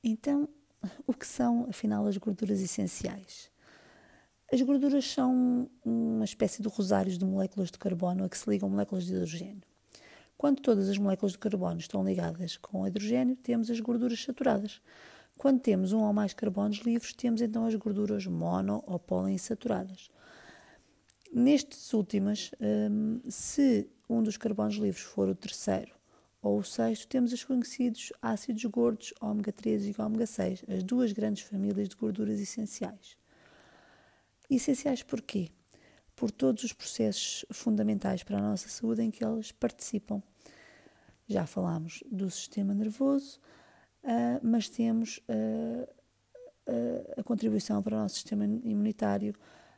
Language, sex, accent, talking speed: Portuguese, female, Brazilian, 140 wpm